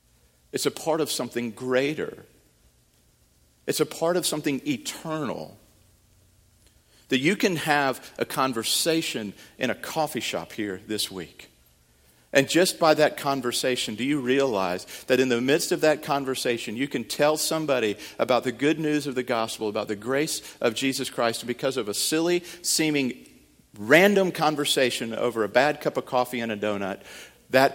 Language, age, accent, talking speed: English, 50-69, American, 160 wpm